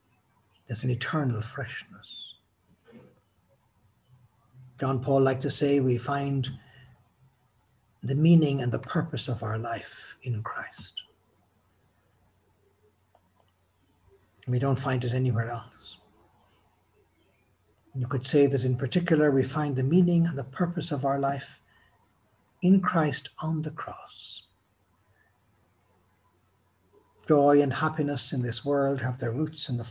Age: 60-79